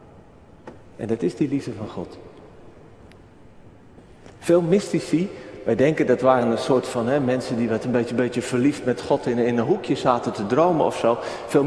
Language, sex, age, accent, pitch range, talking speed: Dutch, male, 40-59, Dutch, 120-165 Hz, 185 wpm